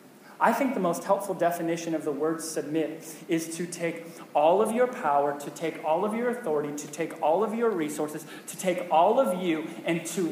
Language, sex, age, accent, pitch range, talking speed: English, male, 30-49, American, 155-235 Hz, 210 wpm